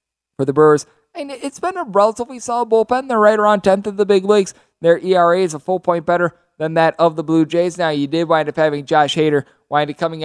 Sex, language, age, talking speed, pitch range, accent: male, English, 20-39, 245 wpm, 140-165 Hz, American